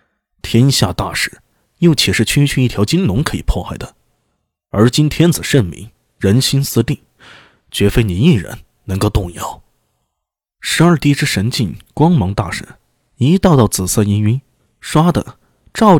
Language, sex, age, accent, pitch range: Chinese, male, 20-39, native, 105-150 Hz